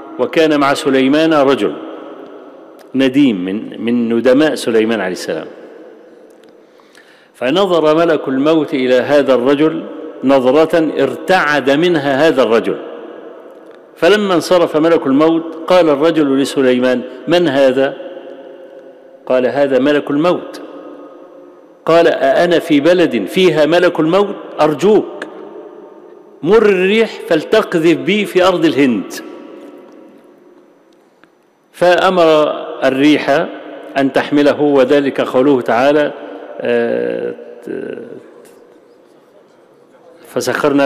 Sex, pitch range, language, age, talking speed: male, 135-180 Hz, Arabic, 50-69, 85 wpm